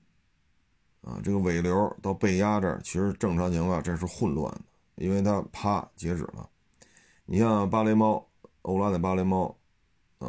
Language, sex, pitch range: Chinese, male, 80-105 Hz